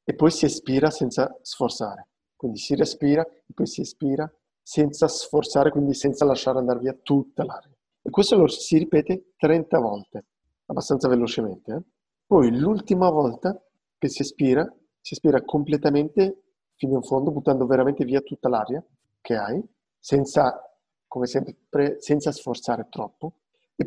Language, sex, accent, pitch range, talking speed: Italian, male, native, 125-160 Hz, 145 wpm